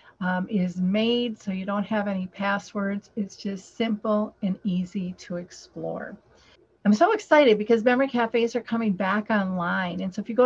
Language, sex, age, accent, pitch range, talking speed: English, female, 50-69, American, 195-230 Hz, 180 wpm